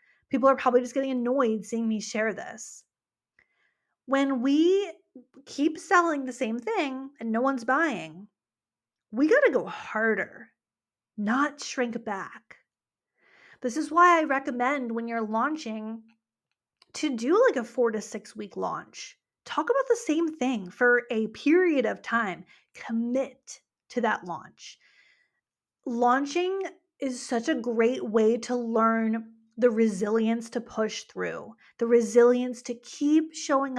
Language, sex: English, female